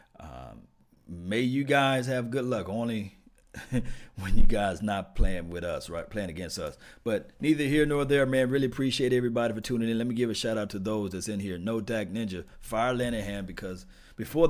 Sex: male